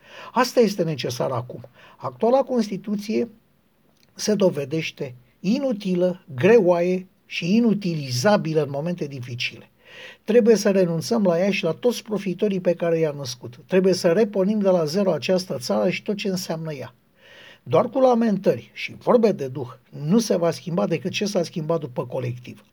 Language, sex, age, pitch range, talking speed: Romanian, male, 50-69, 155-210 Hz, 155 wpm